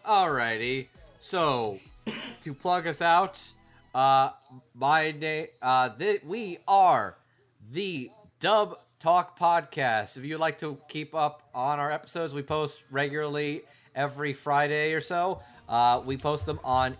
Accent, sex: American, male